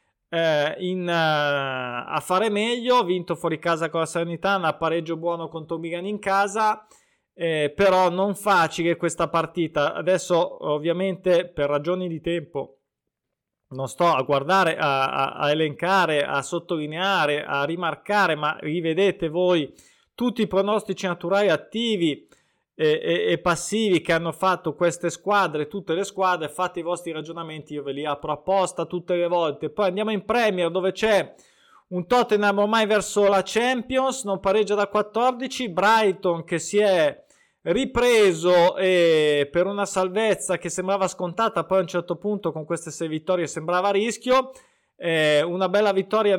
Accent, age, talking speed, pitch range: native, 20-39, 145 wpm, 165-200 Hz